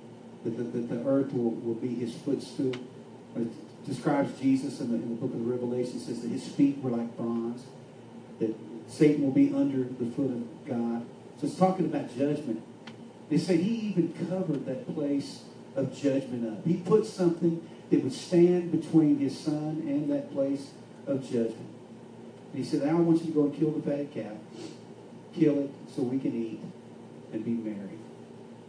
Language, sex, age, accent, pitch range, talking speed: English, male, 40-59, American, 115-165 Hz, 185 wpm